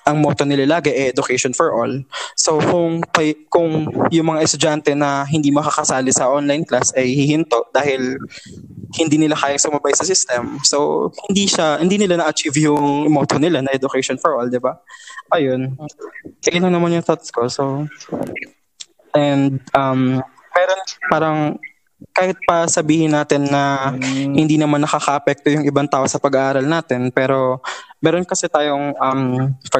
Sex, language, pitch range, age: male, Filipino, 130-155 Hz, 20-39